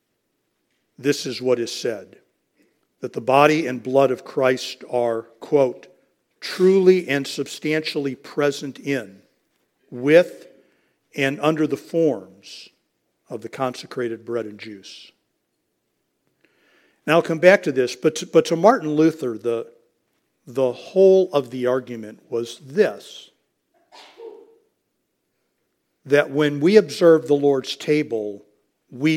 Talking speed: 120 wpm